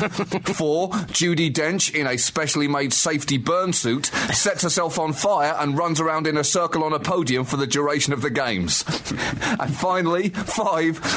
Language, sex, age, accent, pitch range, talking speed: English, male, 30-49, British, 125-170 Hz, 170 wpm